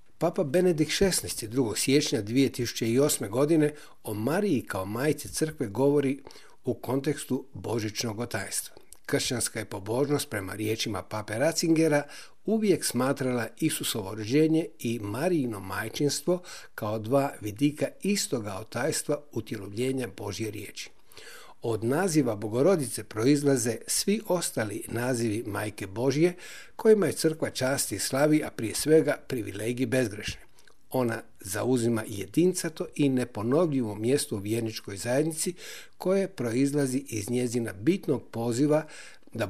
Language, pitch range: Croatian, 110-150 Hz